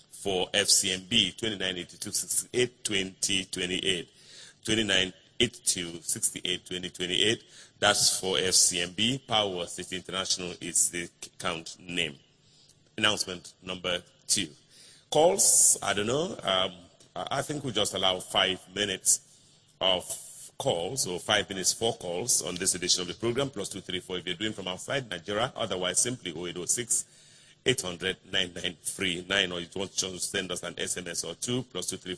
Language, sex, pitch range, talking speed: English, male, 90-110 Hz, 145 wpm